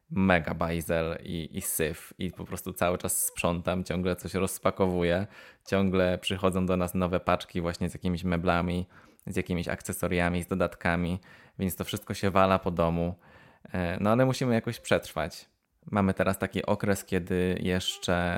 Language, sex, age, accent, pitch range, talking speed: Polish, male, 20-39, native, 90-95 Hz, 155 wpm